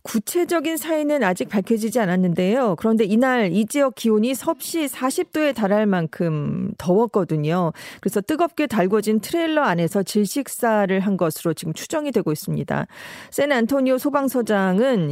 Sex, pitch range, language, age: female, 185-255 Hz, Korean, 40-59